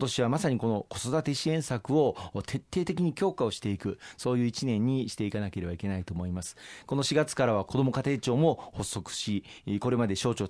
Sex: male